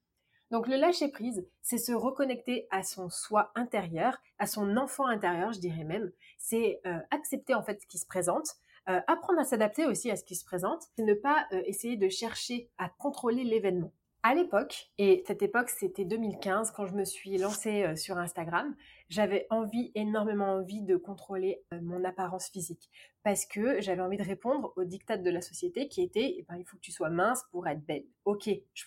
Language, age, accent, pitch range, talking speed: French, 30-49, French, 185-250 Hz, 205 wpm